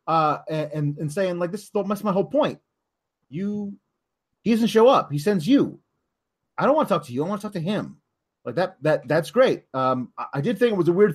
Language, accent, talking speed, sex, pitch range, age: English, American, 235 wpm, male, 155-225 Hz, 30-49